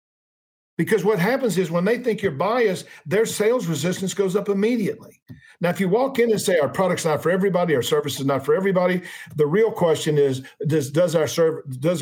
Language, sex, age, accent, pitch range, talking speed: English, male, 50-69, American, 145-200 Hz, 210 wpm